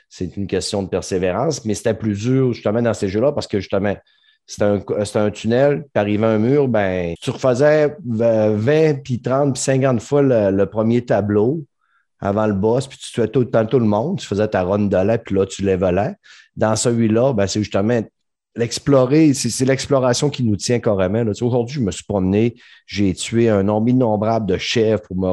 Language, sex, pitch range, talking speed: French, male, 100-130 Hz, 210 wpm